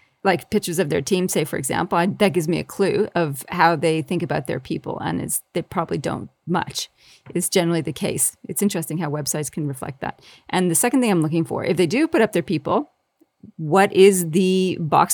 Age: 40-59